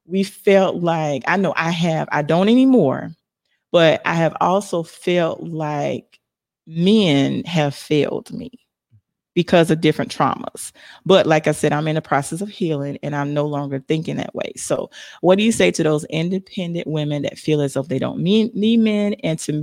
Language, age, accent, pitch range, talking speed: English, 30-49, American, 150-190 Hz, 185 wpm